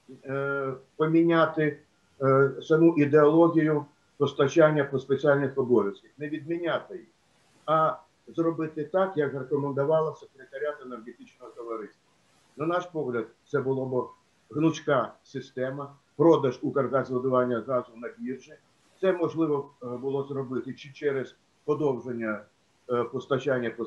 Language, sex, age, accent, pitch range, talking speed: Ukrainian, male, 50-69, native, 135-160 Hz, 100 wpm